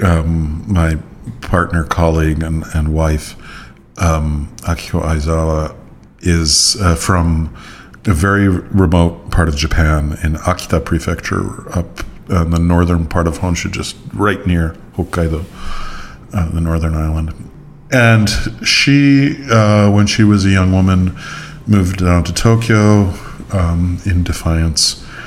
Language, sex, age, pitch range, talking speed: English, male, 50-69, 80-105 Hz, 130 wpm